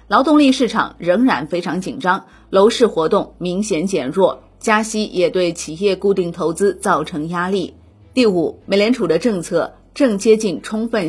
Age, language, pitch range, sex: 30-49, Chinese, 175-230 Hz, female